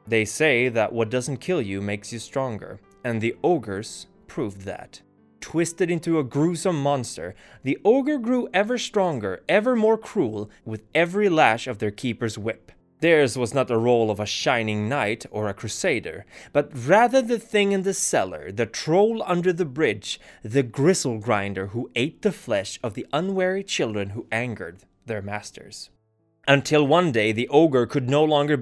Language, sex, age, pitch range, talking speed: English, male, 20-39, 110-170 Hz, 170 wpm